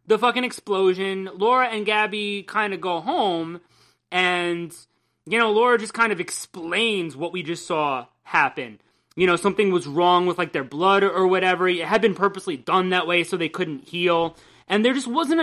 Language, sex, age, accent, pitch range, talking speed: English, male, 30-49, American, 175-225 Hz, 190 wpm